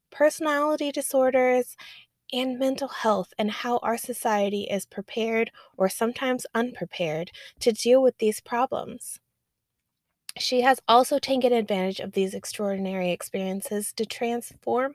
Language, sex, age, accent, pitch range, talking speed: English, female, 20-39, American, 210-265 Hz, 120 wpm